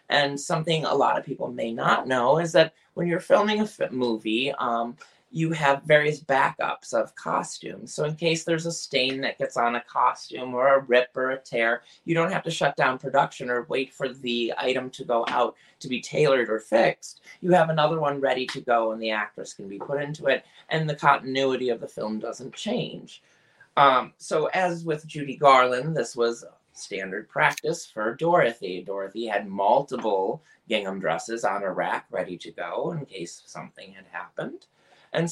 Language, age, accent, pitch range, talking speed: English, 30-49, American, 115-155 Hz, 190 wpm